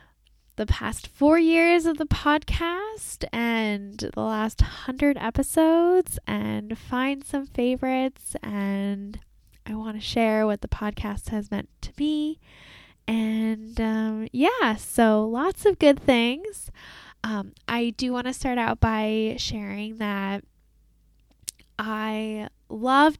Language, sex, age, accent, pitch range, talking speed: English, female, 10-29, American, 205-275 Hz, 125 wpm